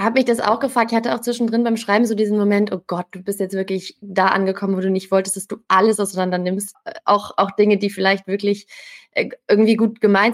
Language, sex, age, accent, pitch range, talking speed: German, female, 20-39, German, 190-215 Hz, 230 wpm